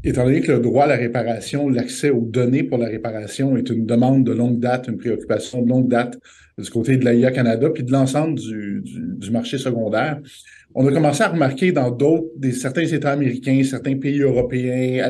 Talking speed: 210 wpm